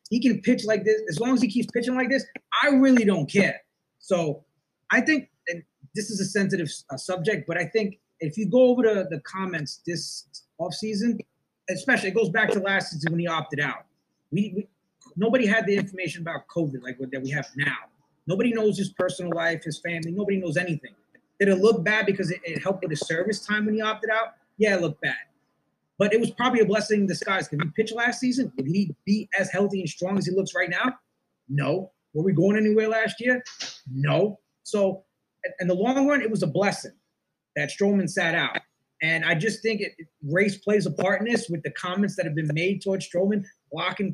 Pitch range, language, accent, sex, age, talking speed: 170-220 Hz, English, American, male, 20-39, 220 wpm